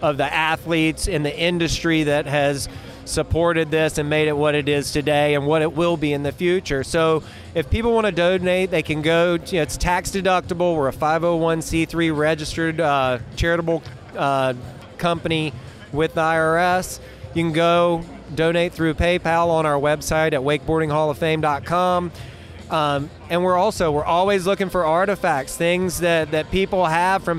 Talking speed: 160 wpm